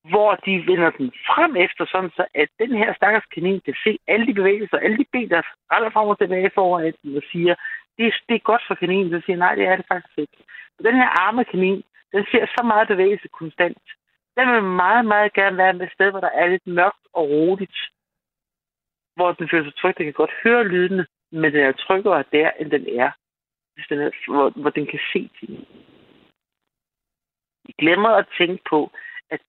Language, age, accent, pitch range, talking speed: Danish, 60-79, native, 170-225 Hz, 210 wpm